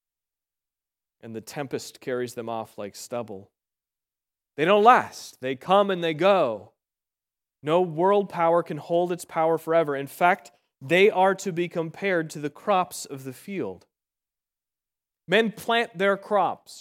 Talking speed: 145 wpm